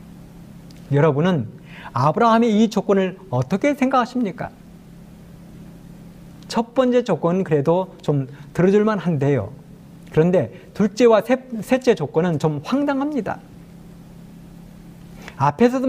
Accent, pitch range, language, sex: native, 165-215 Hz, Korean, male